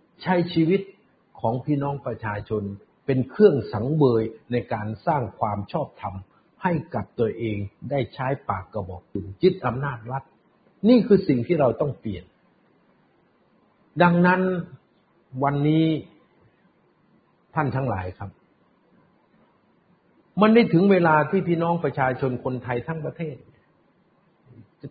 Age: 60-79